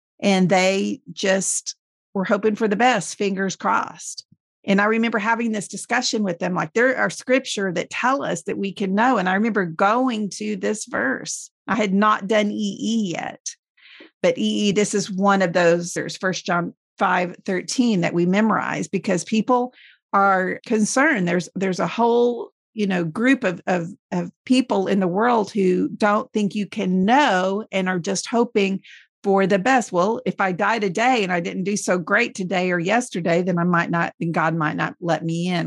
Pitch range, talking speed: 175-215 Hz, 190 wpm